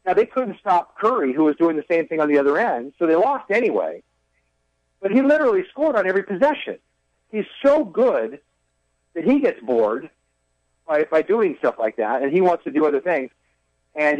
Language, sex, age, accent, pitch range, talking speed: English, male, 50-69, American, 135-205 Hz, 200 wpm